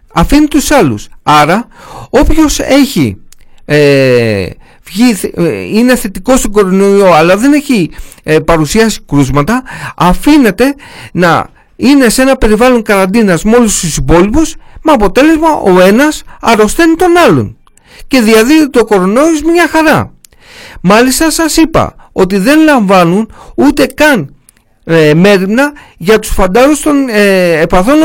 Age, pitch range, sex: 50-69, 190-270 Hz, male